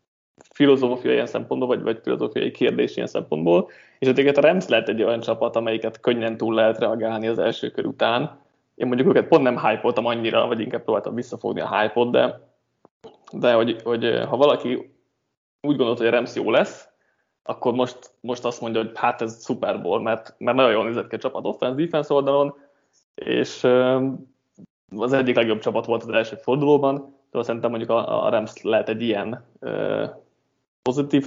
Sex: male